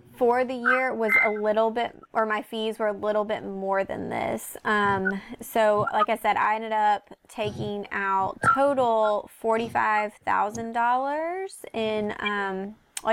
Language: English